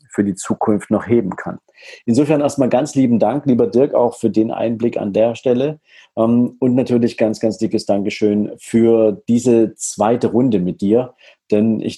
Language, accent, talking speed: German, German, 170 wpm